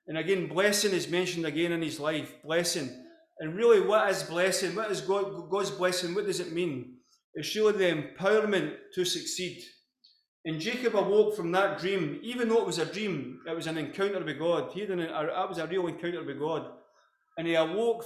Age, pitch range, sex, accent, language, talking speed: 30-49, 165-200 Hz, male, British, English, 195 wpm